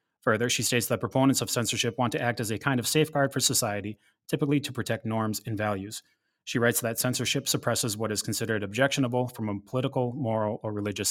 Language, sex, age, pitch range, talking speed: English, male, 30-49, 110-130 Hz, 205 wpm